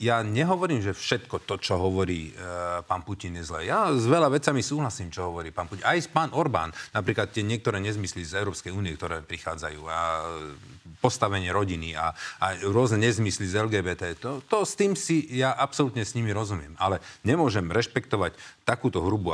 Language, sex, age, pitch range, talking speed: Slovak, male, 40-59, 100-125 Hz, 175 wpm